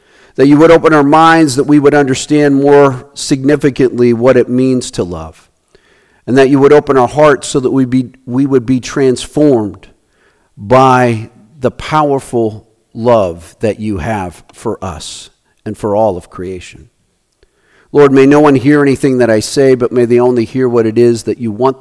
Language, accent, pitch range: English, American, 105-140 Hz